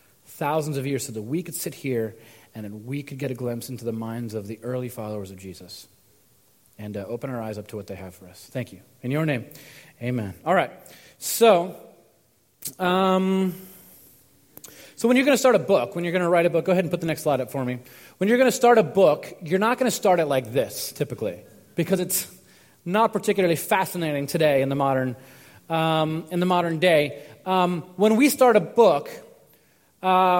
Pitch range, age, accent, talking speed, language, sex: 125-190 Hz, 30-49, American, 215 wpm, English, male